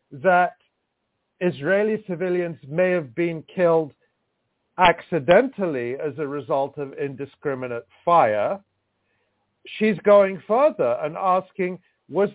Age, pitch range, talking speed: 50-69, 150-195 Hz, 95 wpm